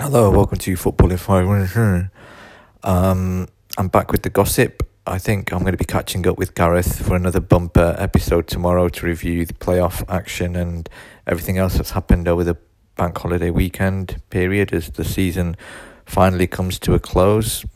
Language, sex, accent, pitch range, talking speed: English, male, British, 85-100 Hz, 170 wpm